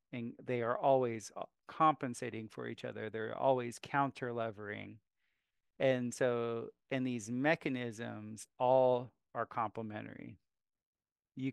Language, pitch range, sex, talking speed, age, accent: English, 115-135 Hz, male, 105 wpm, 40-59, American